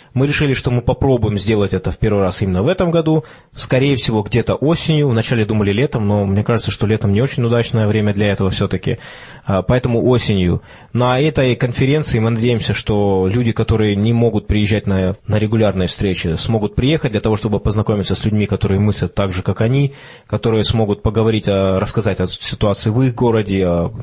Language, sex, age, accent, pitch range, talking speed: Russian, male, 20-39, native, 105-125 Hz, 180 wpm